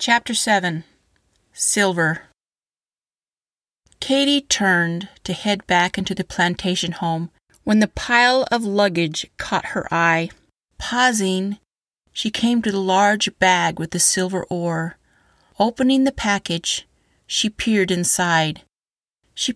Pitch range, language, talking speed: 175-230 Hz, English, 115 wpm